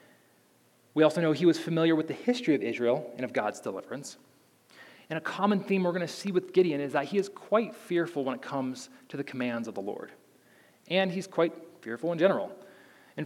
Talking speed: 215 wpm